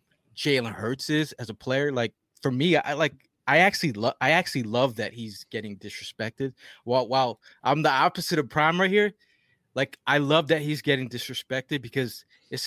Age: 20-39